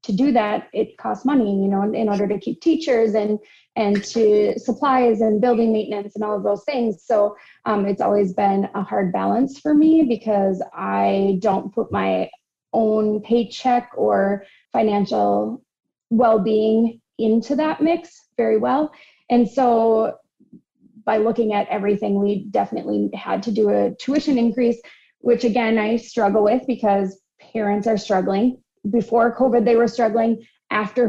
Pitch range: 205-235 Hz